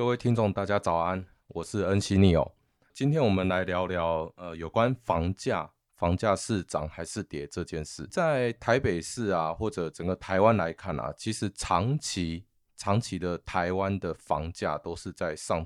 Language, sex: Chinese, male